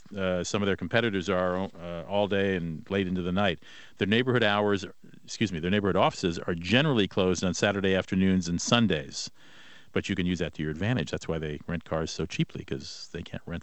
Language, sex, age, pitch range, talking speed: English, male, 50-69, 90-115 Hz, 215 wpm